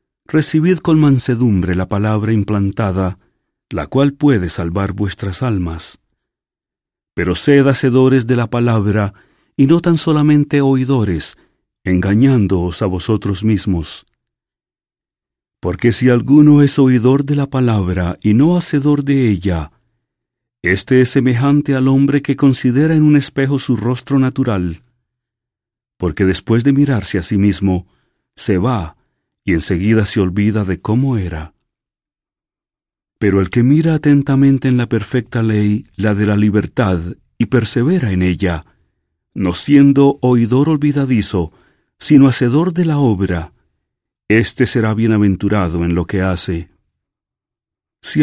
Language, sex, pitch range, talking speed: English, male, 95-135 Hz, 130 wpm